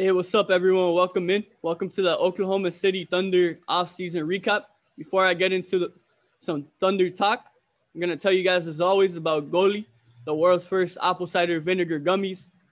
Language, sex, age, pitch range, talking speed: English, male, 20-39, 175-200 Hz, 175 wpm